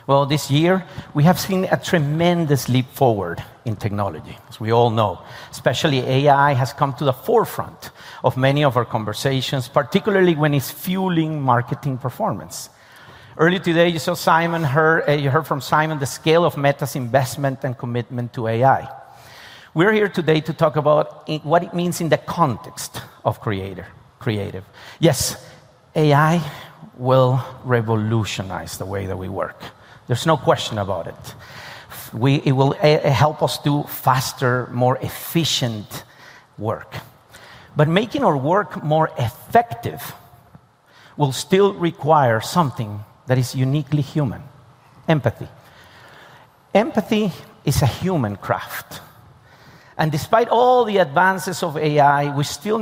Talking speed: 140 wpm